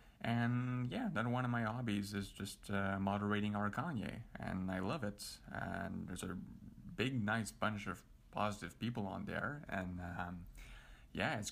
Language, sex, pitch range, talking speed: English, male, 95-110 Hz, 165 wpm